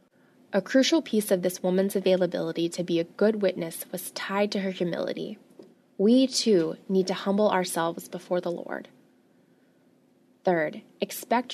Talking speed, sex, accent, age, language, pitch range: 145 wpm, female, American, 20-39, English, 180-215 Hz